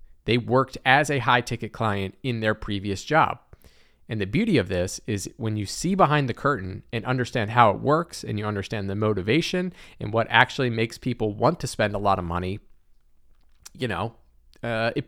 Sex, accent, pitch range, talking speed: male, American, 95-125 Hz, 195 wpm